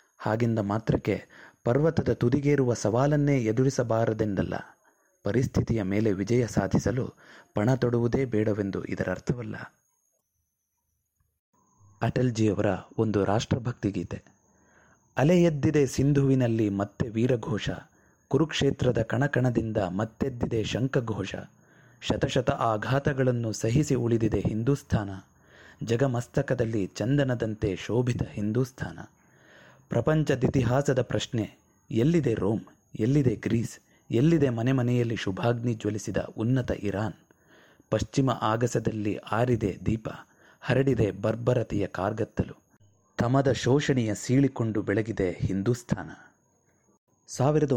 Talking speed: 80 wpm